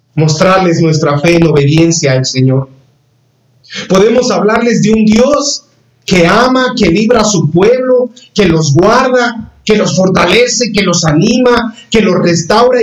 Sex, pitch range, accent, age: male, 140-220 Hz, Mexican, 50-69